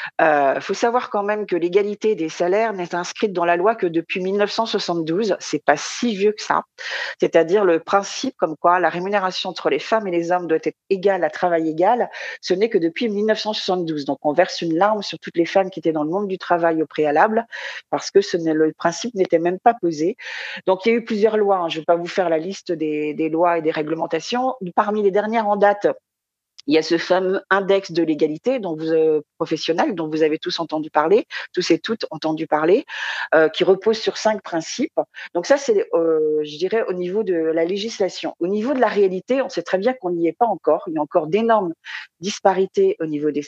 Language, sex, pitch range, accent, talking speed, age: French, female, 165-205 Hz, French, 225 wpm, 40-59